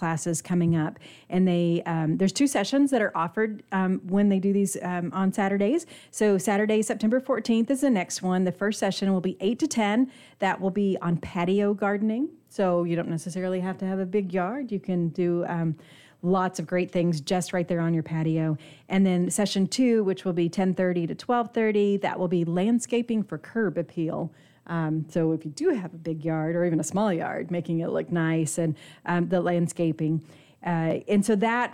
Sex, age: female, 40-59